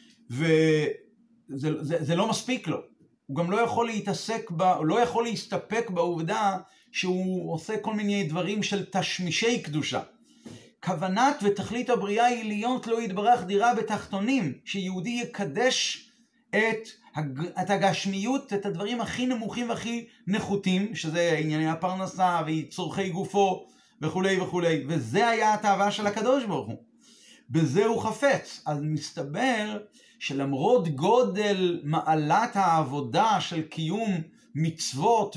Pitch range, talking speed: 170-225 Hz, 120 wpm